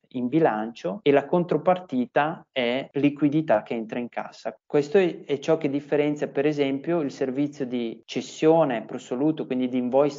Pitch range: 120-145 Hz